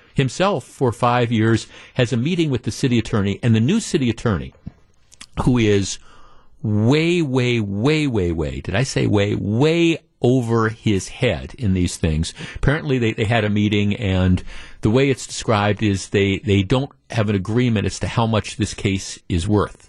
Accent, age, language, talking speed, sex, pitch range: American, 50-69, English, 180 wpm, male, 105-135 Hz